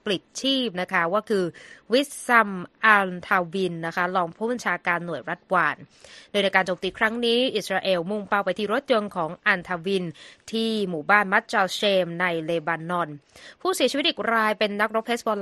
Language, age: Thai, 20-39